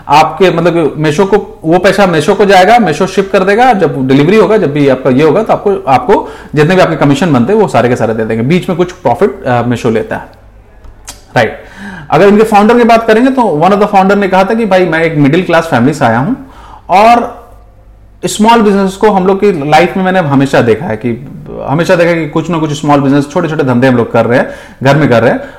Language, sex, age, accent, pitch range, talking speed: Hindi, male, 30-49, native, 135-215 Hz, 245 wpm